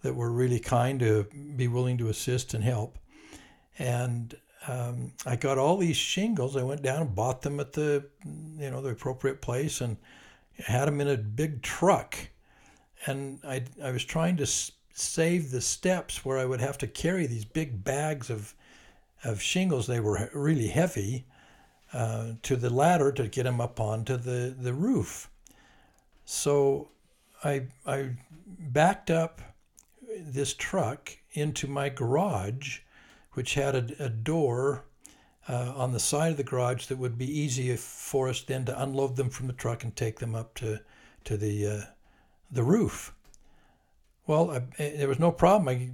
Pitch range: 120-145 Hz